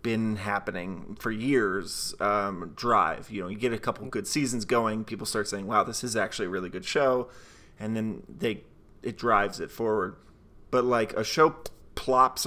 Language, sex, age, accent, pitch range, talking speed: English, male, 30-49, American, 105-130 Hz, 185 wpm